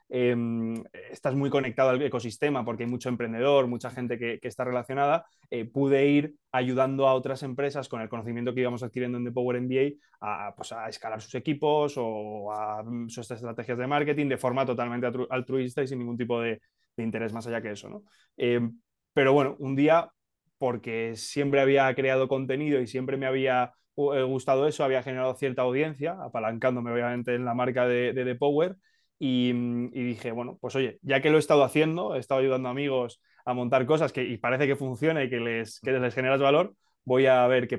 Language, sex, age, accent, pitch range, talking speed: Spanish, male, 20-39, Spanish, 120-140 Hz, 205 wpm